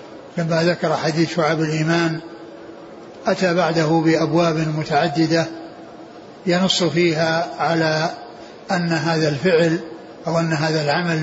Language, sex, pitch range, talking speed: Arabic, male, 160-175 Hz, 100 wpm